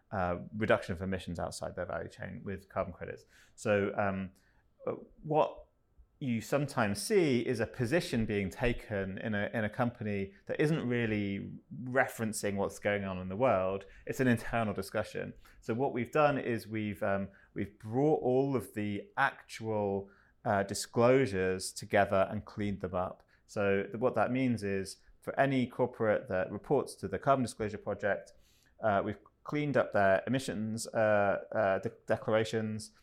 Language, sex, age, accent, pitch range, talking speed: English, male, 30-49, British, 100-115 Hz, 160 wpm